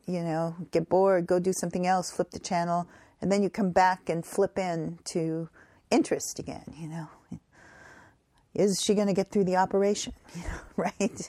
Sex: female